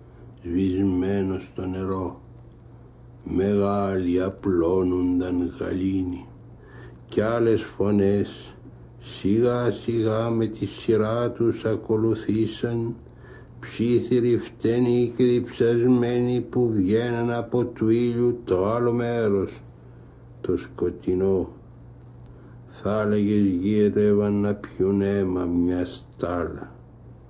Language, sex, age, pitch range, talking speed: Greek, male, 60-79, 100-120 Hz, 80 wpm